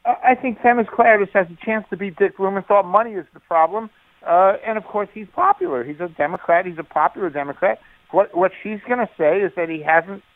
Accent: American